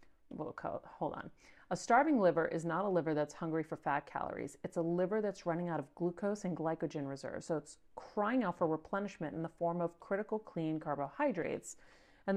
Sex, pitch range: female, 160-200 Hz